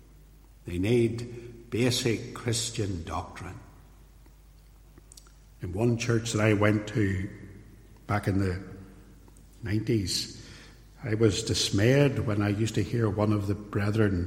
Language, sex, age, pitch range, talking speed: English, male, 60-79, 100-120 Hz, 120 wpm